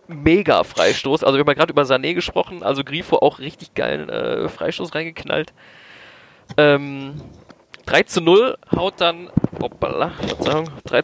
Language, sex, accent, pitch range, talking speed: German, male, German, 130-170 Hz, 145 wpm